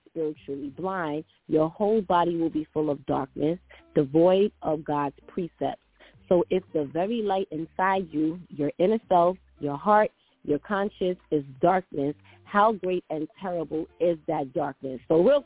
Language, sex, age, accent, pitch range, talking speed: English, female, 30-49, American, 155-195 Hz, 150 wpm